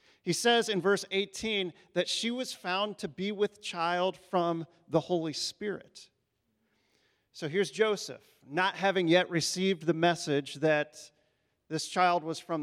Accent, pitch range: American, 165-205 Hz